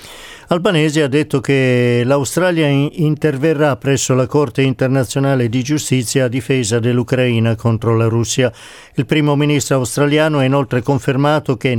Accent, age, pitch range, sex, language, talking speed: native, 50-69, 130-150 Hz, male, Italian, 130 wpm